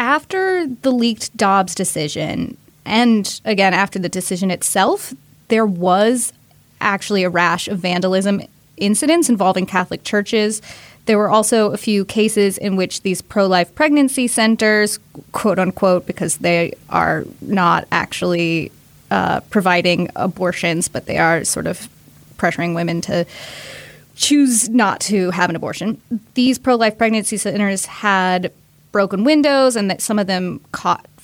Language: English